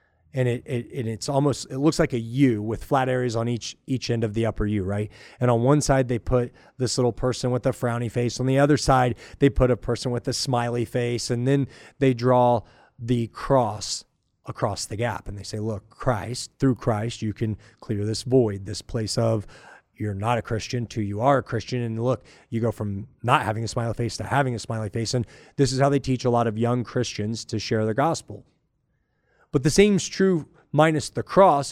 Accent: American